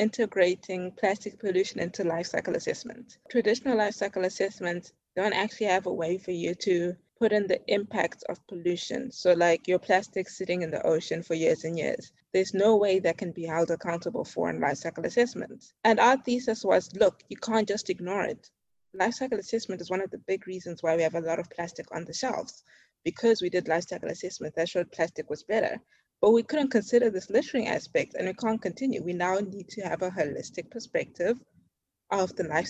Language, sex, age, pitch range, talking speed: English, female, 20-39, 175-220 Hz, 205 wpm